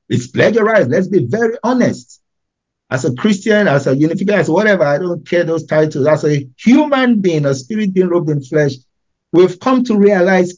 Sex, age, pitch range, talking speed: male, 50-69, 125-180 Hz, 180 wpm